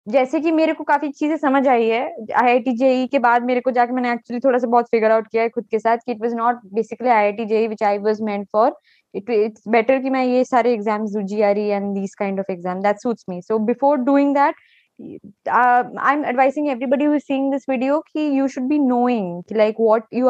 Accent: native